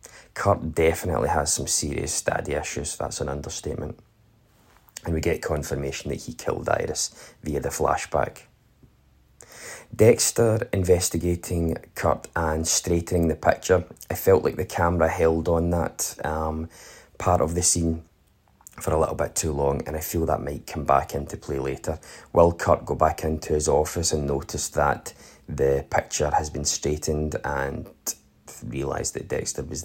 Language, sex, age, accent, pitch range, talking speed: English, male, 20-39, British, 80-90 Hz, 155 wpm